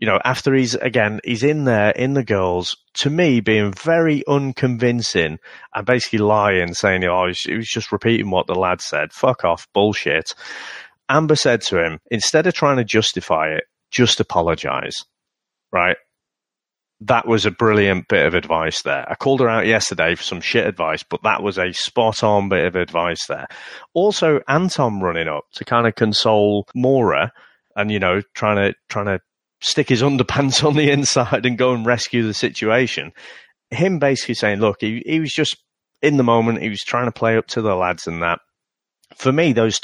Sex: male